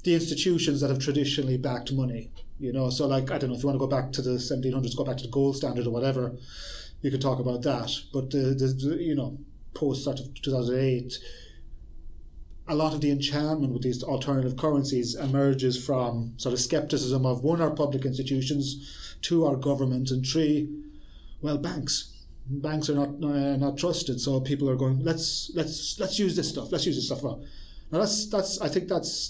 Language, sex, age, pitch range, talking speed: English, male, 30-49, 130-155 Hz, 205 wpm